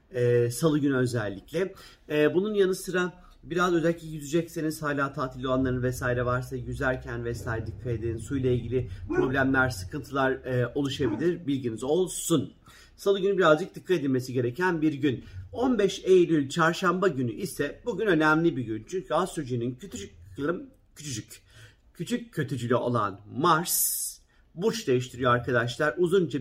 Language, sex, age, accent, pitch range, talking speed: Turkish, male, 50-69, native, 125-170 Hz, 130 wpm